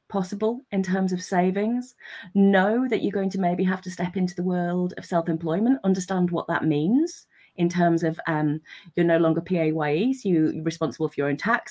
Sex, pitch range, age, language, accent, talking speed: female, 165-210 Hz, 30-49, English, British, 190 wpm